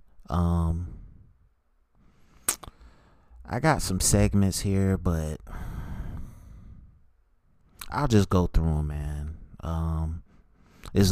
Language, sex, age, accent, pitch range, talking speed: English, male, 30-49, American, 80-95 Hz, 80 wpm